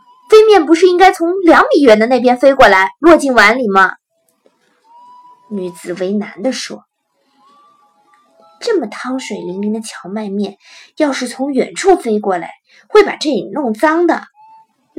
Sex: female